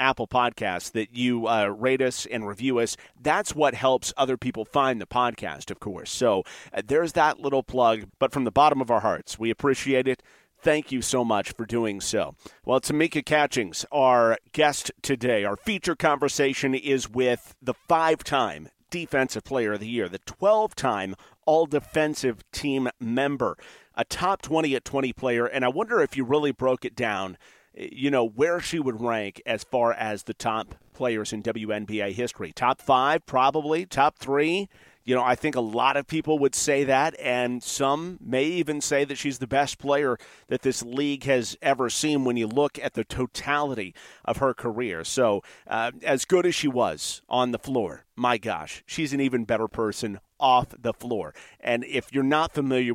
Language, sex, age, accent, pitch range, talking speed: English, male, 40-59, American, 115-145 Hz, 185 wpm